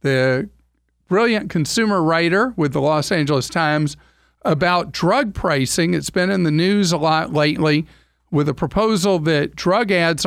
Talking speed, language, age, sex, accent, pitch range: 150 wpm, English, 50-69, male, American, 135-180 Hz